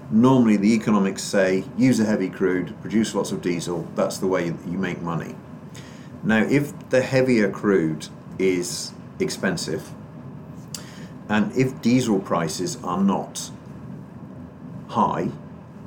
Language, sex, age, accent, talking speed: English, male, 40-59, British, 120 wpm